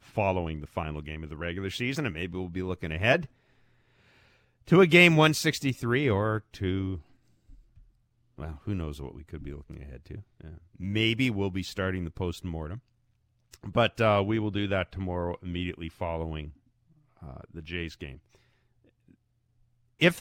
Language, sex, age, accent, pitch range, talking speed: English, male, 40-59, American, 85-120 Hz, 150 wpm